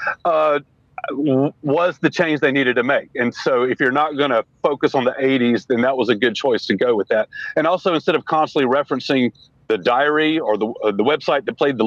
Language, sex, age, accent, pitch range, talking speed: English, male, 40-59, American, 125-150 Hz, 225 wpm